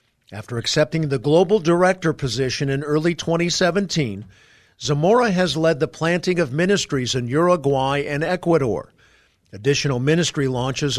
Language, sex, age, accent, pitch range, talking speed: English, male, 50-69, American, 125-160 Hz, 125 wpm